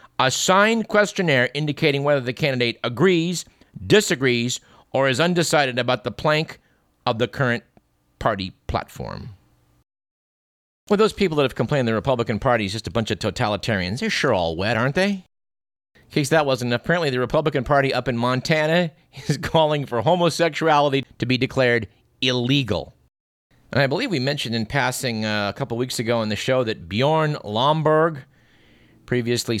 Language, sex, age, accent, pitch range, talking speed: English, male, 50-69, American, 105-140 Hz, 160 wpm